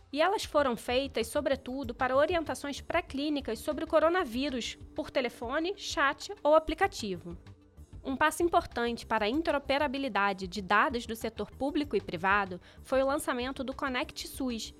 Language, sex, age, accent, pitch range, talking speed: Portuguese, female, 20-39, Brazilian, 230-310 Hz, 140 wpm